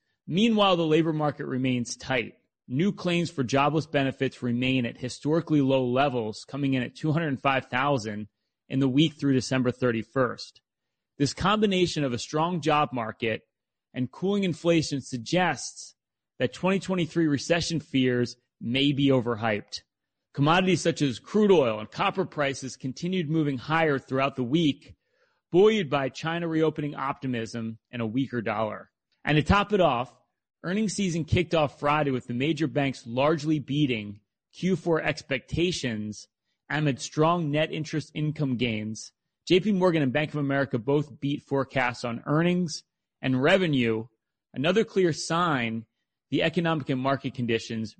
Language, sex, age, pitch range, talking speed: English, male, 30-49, 125-165 Hz, 140 wpm